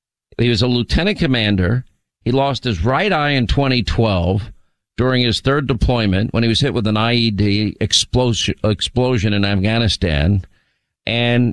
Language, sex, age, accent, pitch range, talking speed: English, male, 50-69, American, 105-140 Hz, 140 wpm